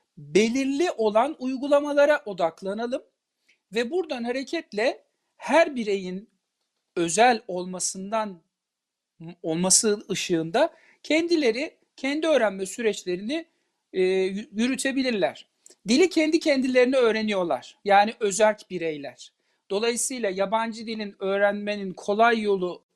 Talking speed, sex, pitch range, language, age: 85 wpm, male, 200-260 Hz, Turkish, 60-79